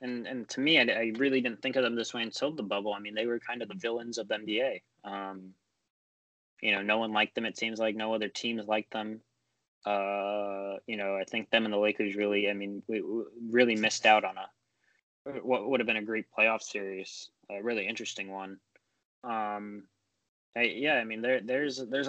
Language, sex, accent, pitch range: English, male, American, 100-115 Hz